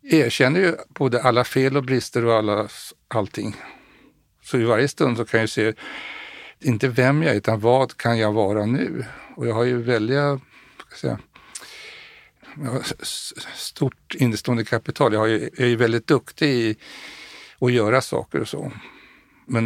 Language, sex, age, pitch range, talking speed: Swedish, male, 60-79, 105-130 Hz, 155 wpm